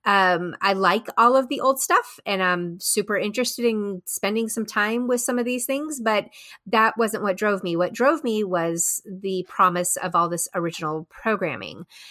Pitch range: 180-235 Hz